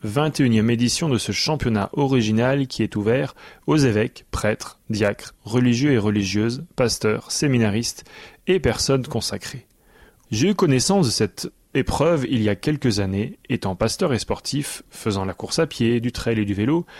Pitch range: 110-140 Hz